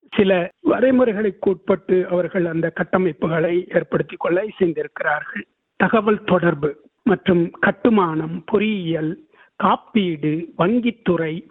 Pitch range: 170-210 Hz